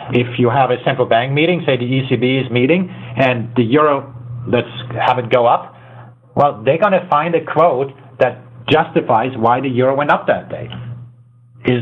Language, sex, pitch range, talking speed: English, male, 120-145 Hz, 190 wpm